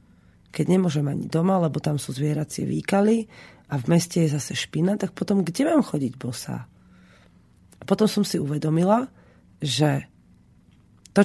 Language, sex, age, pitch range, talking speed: Slovak, female, 30-49, 155-215 Hz, 150 wpm